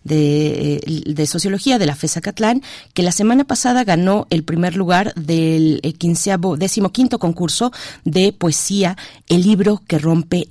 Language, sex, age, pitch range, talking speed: Spanish, female, 30-49, 160-205 Hz, 145 wpm